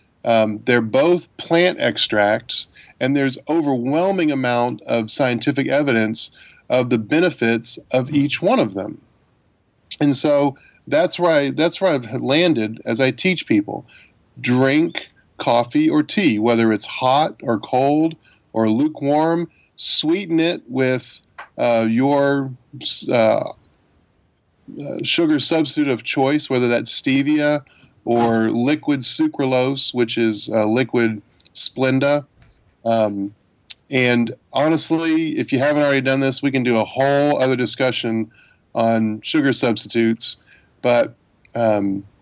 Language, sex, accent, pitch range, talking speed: English, male, American, 115-150 Hz, 120 wpm